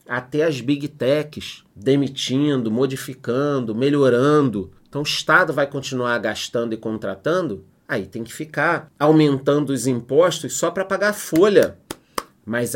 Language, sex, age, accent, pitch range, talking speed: Portuguese, male, 30-49, Brazilian, 115-150 Hz, 130 wpm